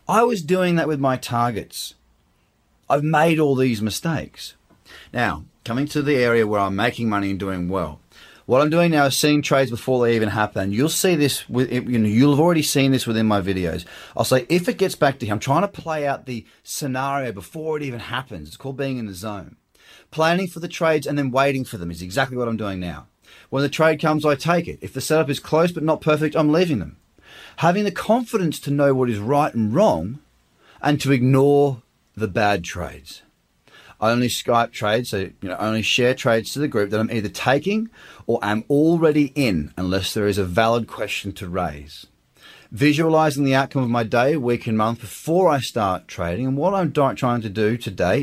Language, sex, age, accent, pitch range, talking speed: English, male, 30-49, Australian, 110-150 Hz, 215 wpm